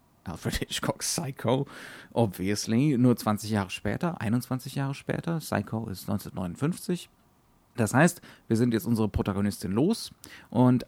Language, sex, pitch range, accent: German, male, 105-130 Hz, German